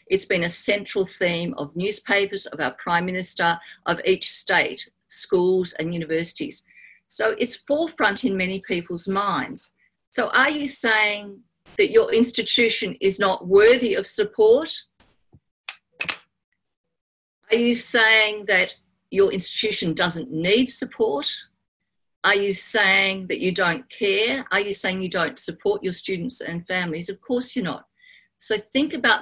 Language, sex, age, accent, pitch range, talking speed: English, female, 50-69, Australian, 185-255 Hz, 140 wpm